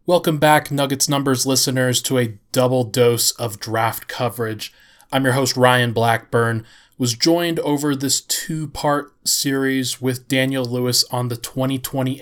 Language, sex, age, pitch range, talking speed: English, male, 20-39, 120-145 Hz, 140 wpm